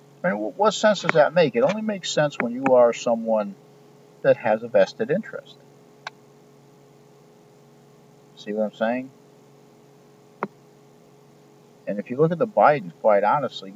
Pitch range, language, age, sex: 110-170 Hz, English, 50-69, male